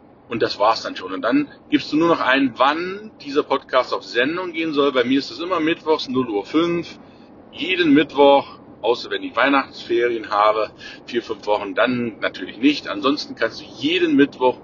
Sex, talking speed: male, 185 wpm